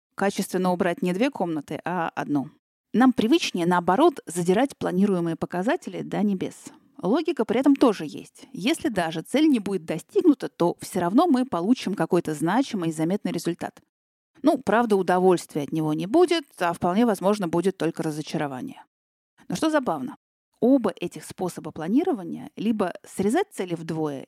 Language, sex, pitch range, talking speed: Russian, female, 170-255 Hz, 150 wpm